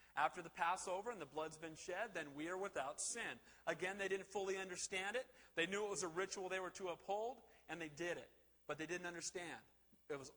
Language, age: English, 40-59